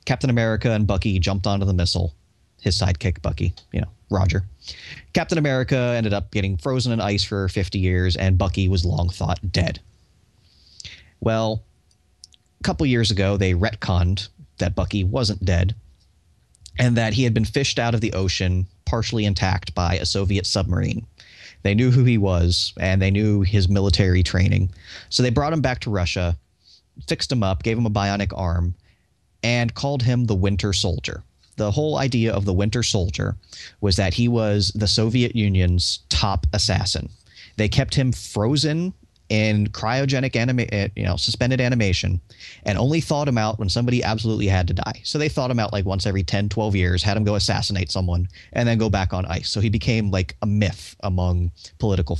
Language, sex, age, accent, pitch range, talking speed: English, male, 30-49, American, 90-115 Hz, 180 wpm